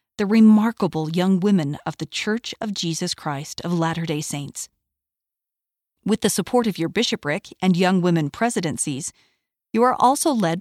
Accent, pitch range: American, 165-215 Hz